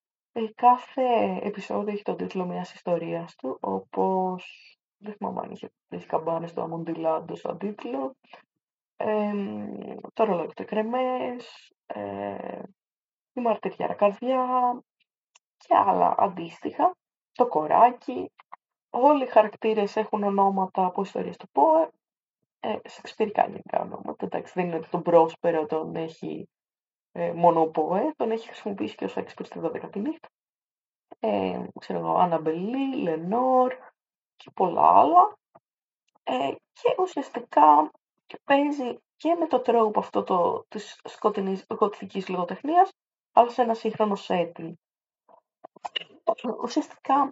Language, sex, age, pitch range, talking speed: Greek, female, 20-39, 180-255 Hz, 120 wpm